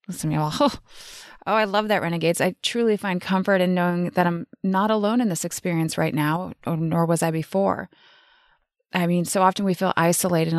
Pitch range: 165-195 Hz